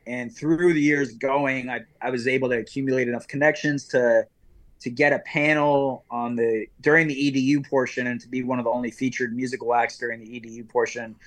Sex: male